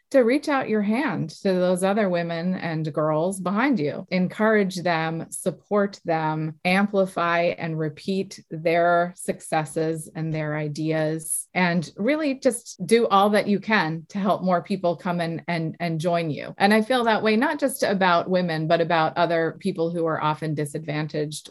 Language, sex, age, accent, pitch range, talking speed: English, female, 30-49, American, 160-195 Hz, 165 wpm